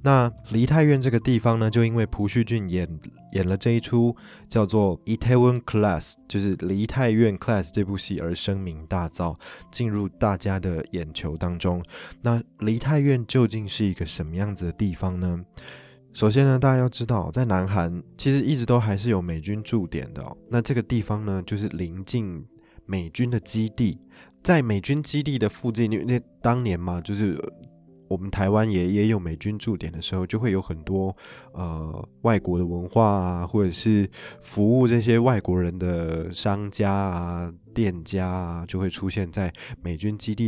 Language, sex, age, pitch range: Chinese, male, 20-39, 90-115 Hz